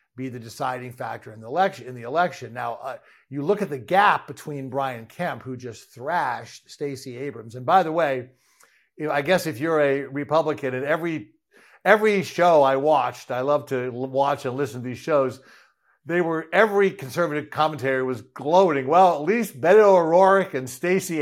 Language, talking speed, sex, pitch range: English, 185 wpm, male, 125-160 Hz